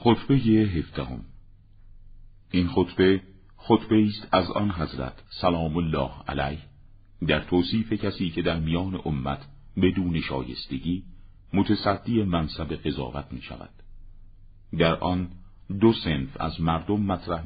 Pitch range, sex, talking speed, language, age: 75-95 Hz, male, 120 wpm, Persian, 50-69